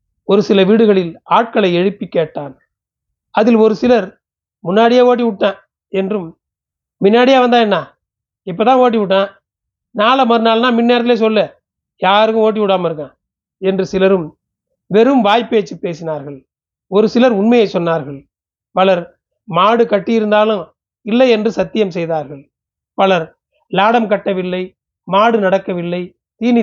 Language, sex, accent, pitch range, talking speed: Tamil, male, native, 180-225 Hz, 110 wpm